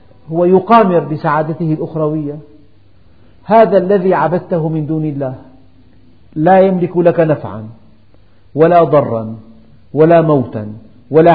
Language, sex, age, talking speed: Arabic, male, 50-69, 100 wpm